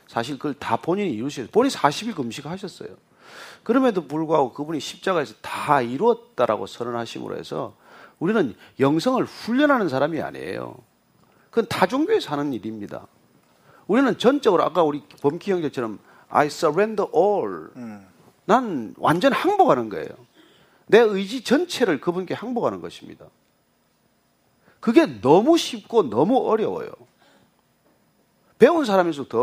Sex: male